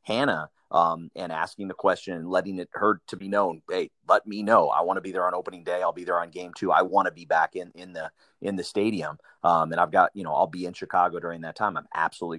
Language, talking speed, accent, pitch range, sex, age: English, 275 wpm, American, 85-105 Hz, male, 30-49